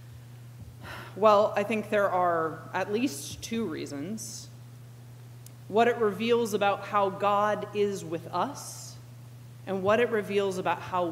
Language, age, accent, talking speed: English, 30-49, American, 130 wpm